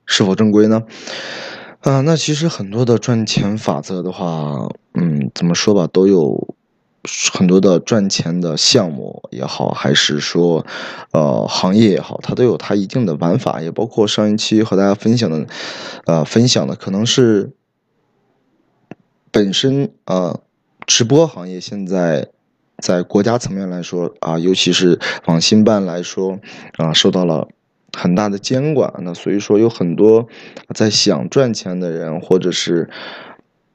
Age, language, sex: 20-39, Chinese, male